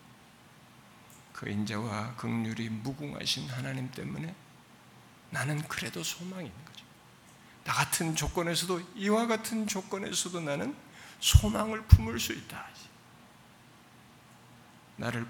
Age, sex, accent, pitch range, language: 50-69, male, native, 130-205 Hz, Korean